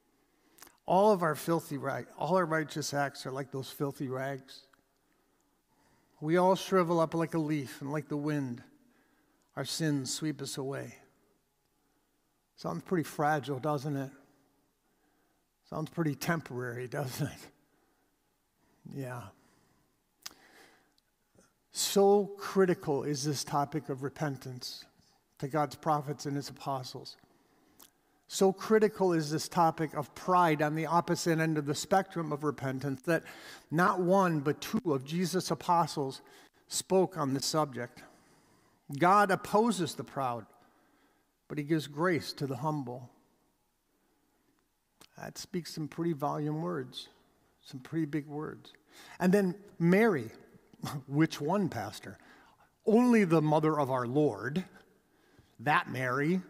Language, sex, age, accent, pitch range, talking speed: English, male, 50-69, American, 140-175 Hz, 125 wpm